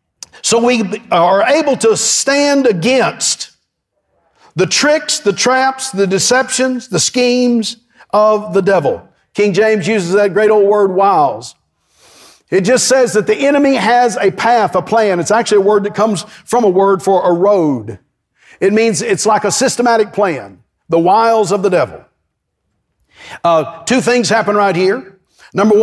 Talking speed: 160 wpm